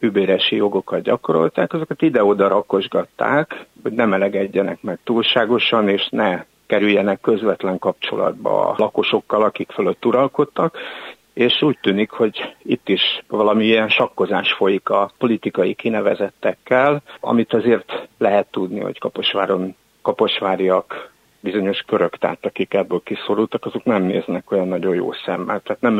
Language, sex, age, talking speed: Hungarian, male, 60-79, 130 wpm